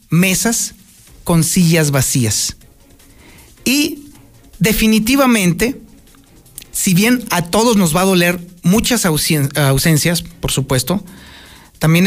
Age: 40-59